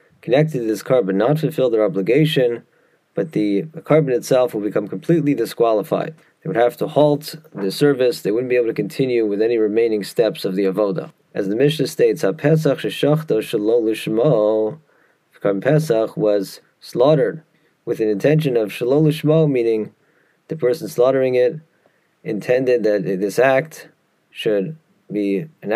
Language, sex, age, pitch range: English, male, 30-49, 115-155 Hz